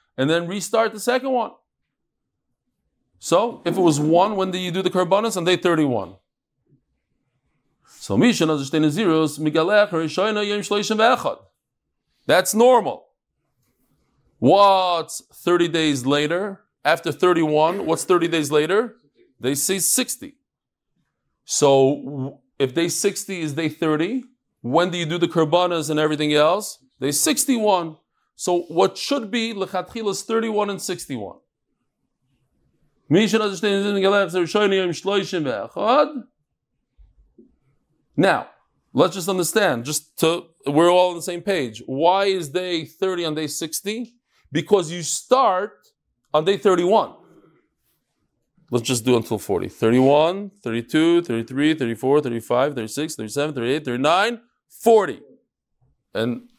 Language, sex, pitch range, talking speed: English, male, 150-205 Hz, 110 wpm